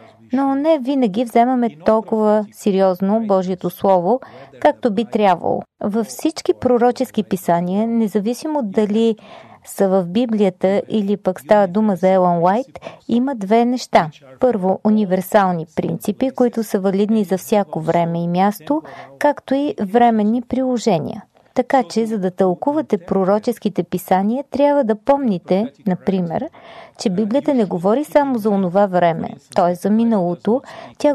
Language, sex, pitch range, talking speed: Bulgarian, female, 190-245 Hz, 130 wpm